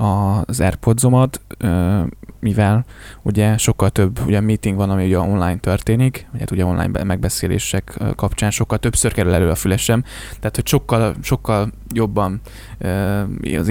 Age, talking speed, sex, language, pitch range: 10-29, 130 wpm, male, Hungarian, 100-115 Hz